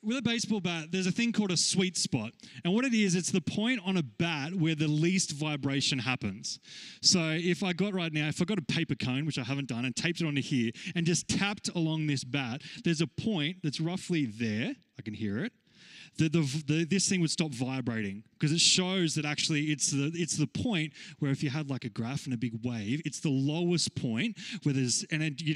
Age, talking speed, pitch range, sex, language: 20-39, 230 wpm, 140-185 Hz, male, English